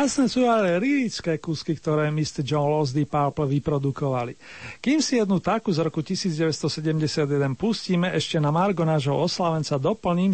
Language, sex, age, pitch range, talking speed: Slovak, male, 40-59, 150-185 Hz, 145 wpm